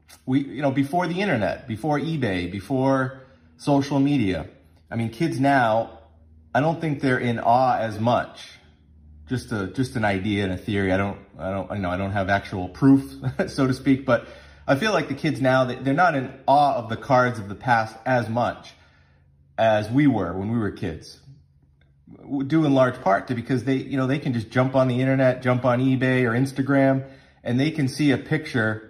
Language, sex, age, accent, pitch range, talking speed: English, male, 30-49, American, 105-135 Hz, 205 wpm